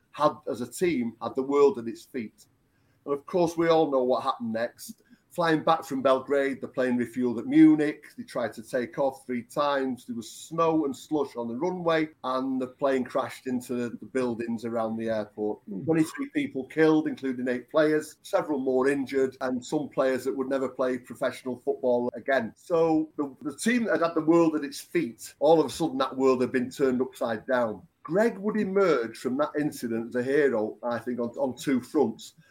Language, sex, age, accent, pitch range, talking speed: English, male, 40-59, British, 125-160 Hz, 200 wpm